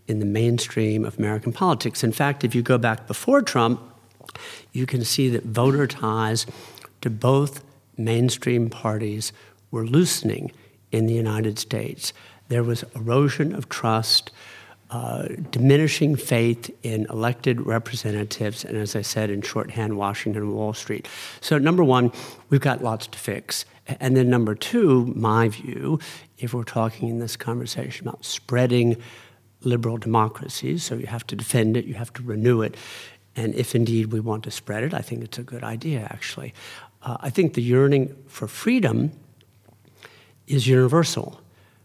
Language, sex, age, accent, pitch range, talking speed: English, male, 50-69, American, 110-130 Hz, 160 wpm